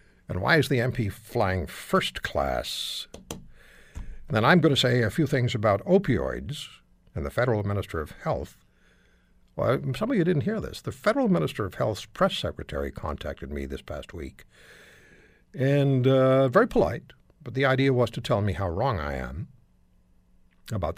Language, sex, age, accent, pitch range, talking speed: English, male, 60-79, American, 80-130 Hz, 170 wpm